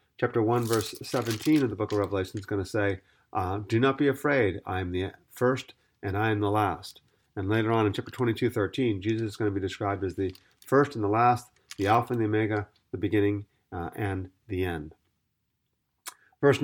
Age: 40-59